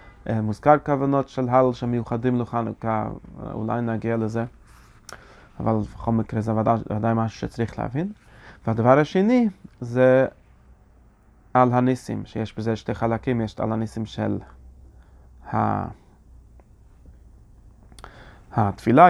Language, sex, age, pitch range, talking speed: Hebrew, male, 30-49, 115-135 Hz, 100 wpm